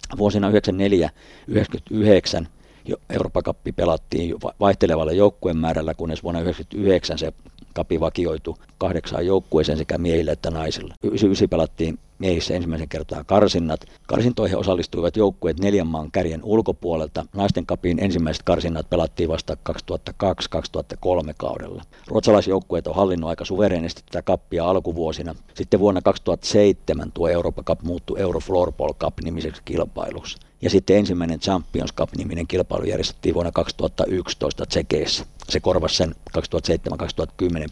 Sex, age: male, 50-69